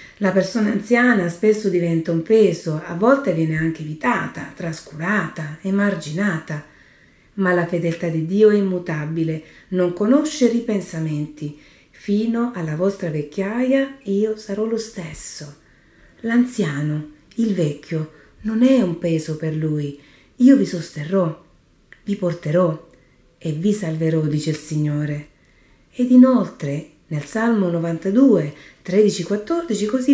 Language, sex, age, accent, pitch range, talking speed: Italian, female, 40-59, native, 160-220 Hz, 115 wpm